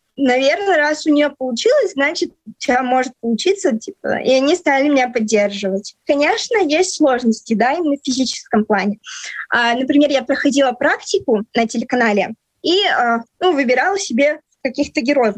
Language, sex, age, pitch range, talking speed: Russian, female, 20-39, 240-305 Hz, 140 wpm